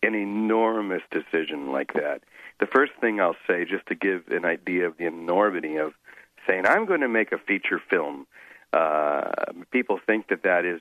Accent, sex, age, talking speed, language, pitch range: American, male, 50-69, 185 wpm, English, 85-110 Hz